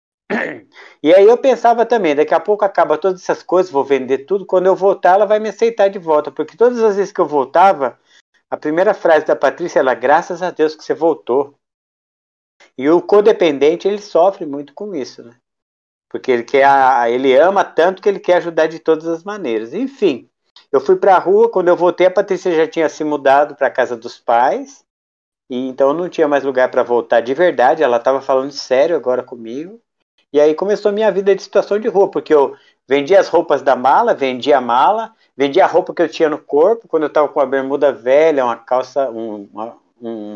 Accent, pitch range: Brazilian, 135-195 Hz